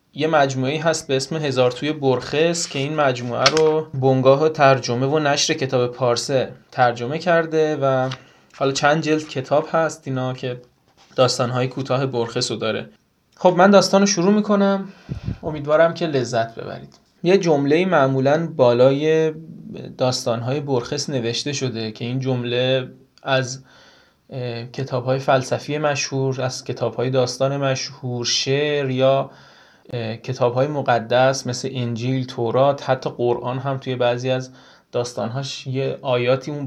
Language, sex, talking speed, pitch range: Persian, male, 130 wpm, 125-155 Hz